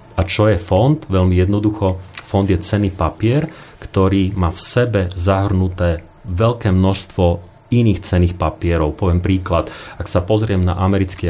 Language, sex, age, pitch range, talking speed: Slovak, male, 40-59, 90-100 Hz, 145 wpm